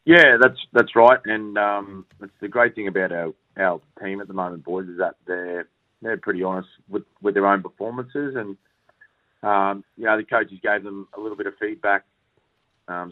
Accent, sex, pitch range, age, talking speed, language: Australian, male, 95-105 Hz, 30-49, 195 wpm, English